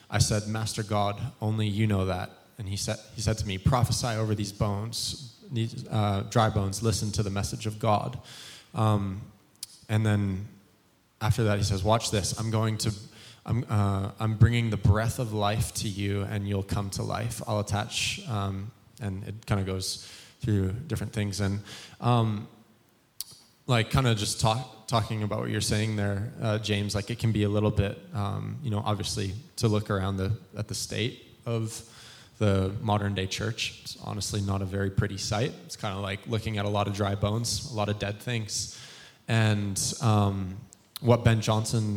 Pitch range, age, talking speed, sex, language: 100-115 Hz, 20-39, 190 wpm, male, English